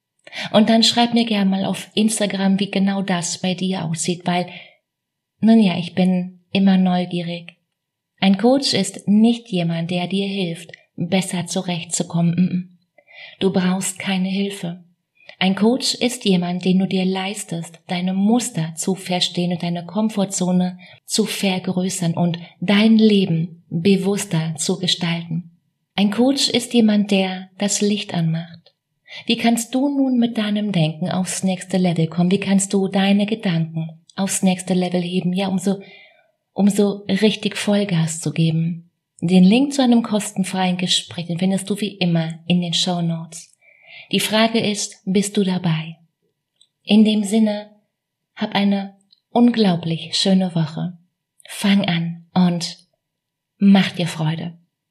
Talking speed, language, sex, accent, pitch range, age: 140 wpm, German, female, German, 170-205 Hz, 30-49